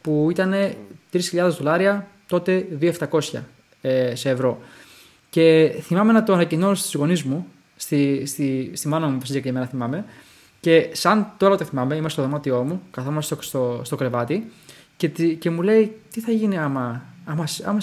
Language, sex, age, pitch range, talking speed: Greek, male, 20-39, 145-205 Hz, 170 wpm